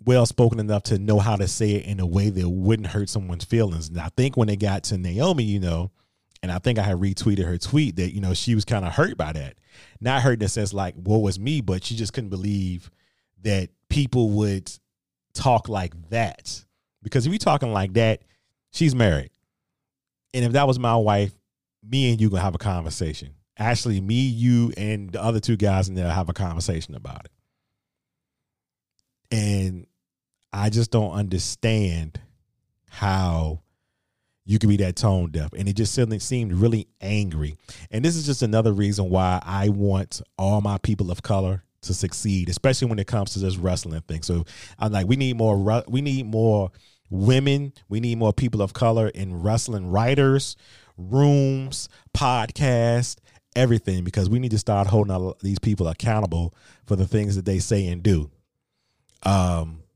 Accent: American